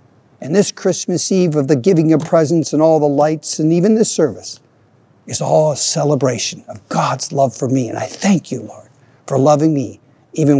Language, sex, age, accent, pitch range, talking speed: English, male, 60-79, American, 130-165 Hz, 200 wpm